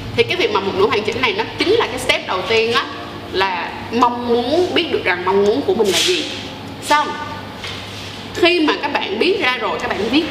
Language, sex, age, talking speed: Vietnamese, female, 20-39, 240 wpm